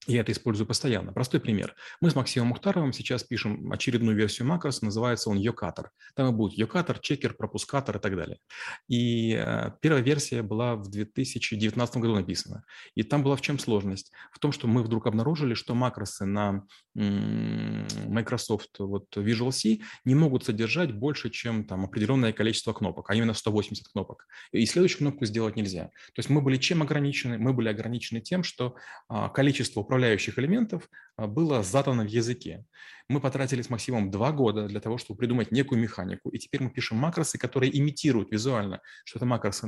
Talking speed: 170 wpm